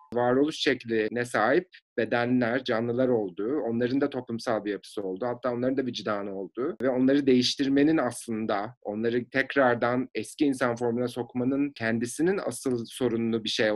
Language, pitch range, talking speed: Turkish, 115-130 Hz, 140 wpm